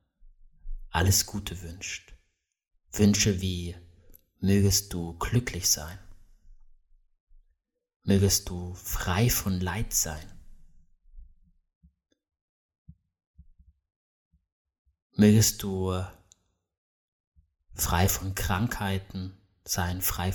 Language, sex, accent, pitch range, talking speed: German, male, German, 85-100 Hz, 65 wpm